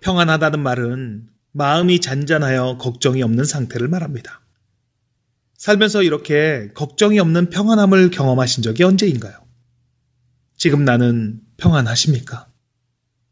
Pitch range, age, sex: 120-155 Hz, 30-49, male